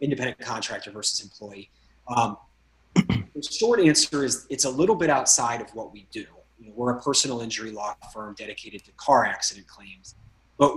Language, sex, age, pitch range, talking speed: English, male, 30-49, 110-145 Hz, 165 wpm